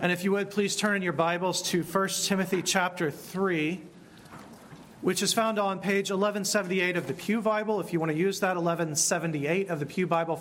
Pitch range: 175-205 Hz